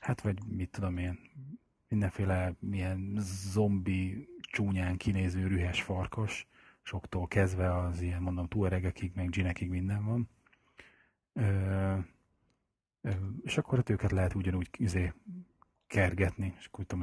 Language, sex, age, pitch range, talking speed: Hungarian, male, 30-49, 90-100 Hz, 130 wpm